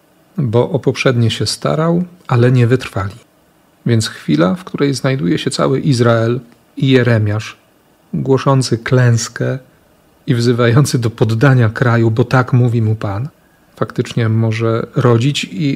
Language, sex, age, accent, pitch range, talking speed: Polish, male, 40-59, native, 115-140 Hz, 130 wpm